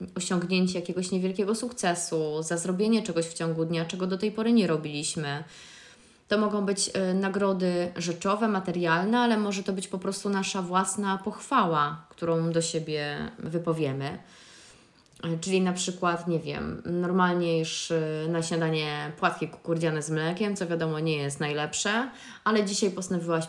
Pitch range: 165-205 Hz